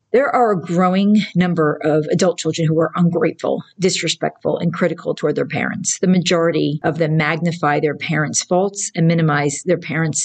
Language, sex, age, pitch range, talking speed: English, female, 40-59, 155-175 Hz, 170 wpm